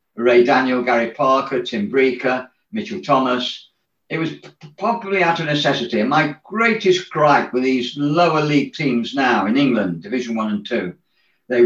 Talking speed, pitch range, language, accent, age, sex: 160 wpm, 135-175 Hz, English, British, 50-69, male